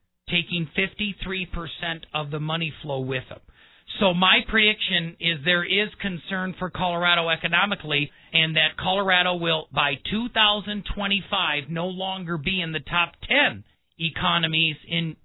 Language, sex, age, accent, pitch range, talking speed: Ukrainian, male, 40-59, American, 155-185 Hz, 130 wpm